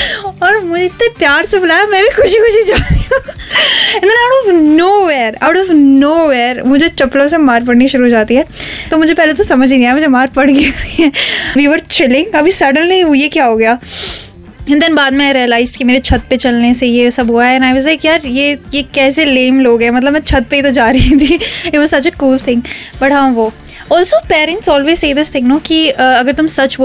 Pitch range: 255-320 Hz